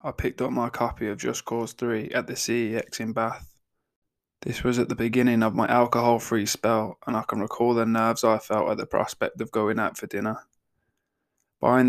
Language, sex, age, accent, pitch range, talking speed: English, male, 20-39, British, 110-120 Hz, 205 wpm